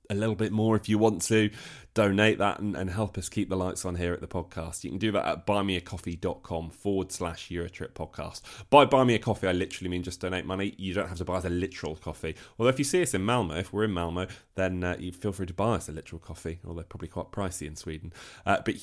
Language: English